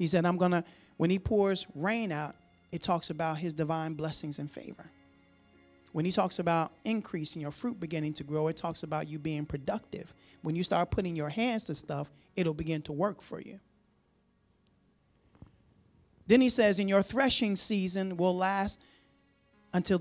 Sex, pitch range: male, 155-210 Hz